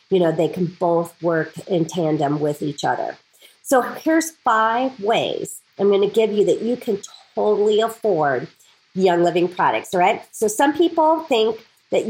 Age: 40-59